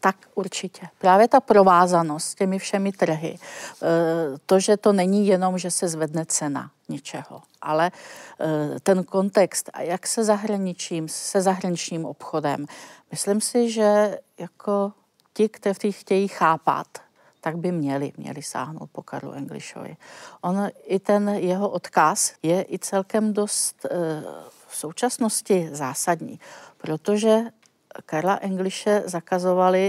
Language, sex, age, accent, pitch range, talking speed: Czech, female, 50-69, native, 170-200 Hz, 120 wpm